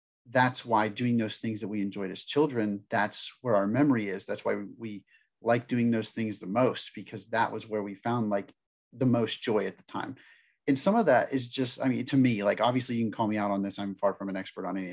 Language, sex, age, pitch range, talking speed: English, male, 30-49, 105-125 Hz, 255 wpm